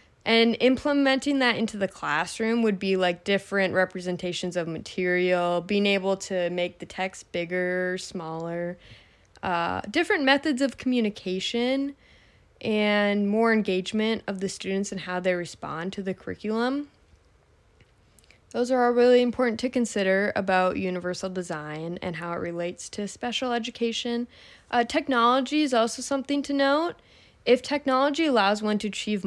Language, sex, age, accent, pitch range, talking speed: English, female, 20-39, American, 180-230 Hz, 140 wpm